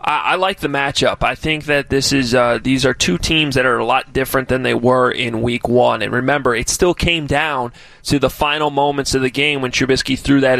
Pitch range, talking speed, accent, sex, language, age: 125-145 Hz, 240 wpm, American, male, English, 20-39